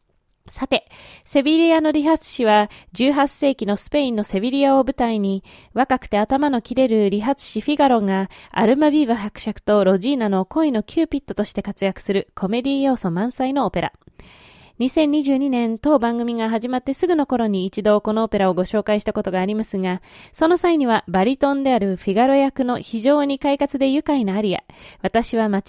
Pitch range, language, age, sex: 200-275 Hz, Japanese, 20-39, female